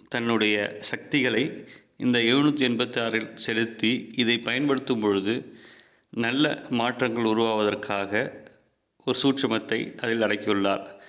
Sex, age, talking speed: male, 30-49, 90 wpm